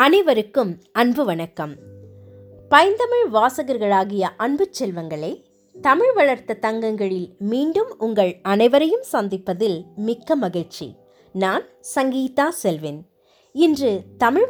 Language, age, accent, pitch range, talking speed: Tamil, 20-39, native, 190-310 Hz, 85 wpm